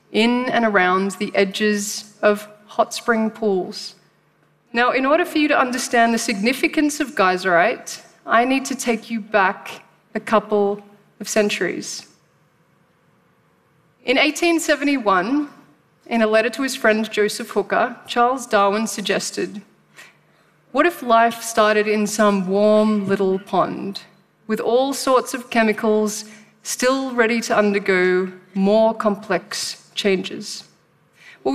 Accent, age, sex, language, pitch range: Australian, 30-49, female, Korean, 205-245 Hz